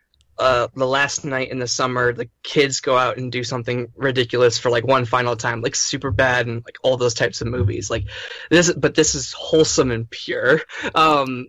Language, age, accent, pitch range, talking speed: English, 20-39, American, 120-140 Hz, 205 wpm